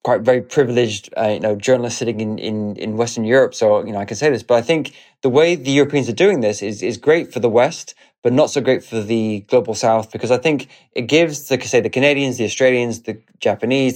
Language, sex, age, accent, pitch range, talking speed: English, male, 20-39, British, 115-135 Hz, 245 wpm